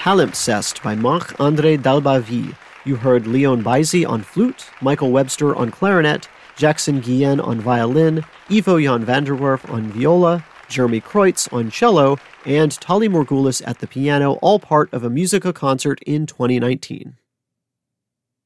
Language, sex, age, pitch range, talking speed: English, male, 40-59, 125-165 Hz, 135 wpm